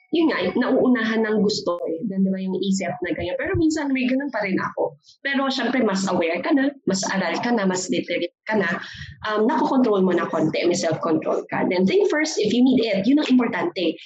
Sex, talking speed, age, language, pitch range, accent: female, 220 wpm, 20-39, Filipino, 190-265 Hz, native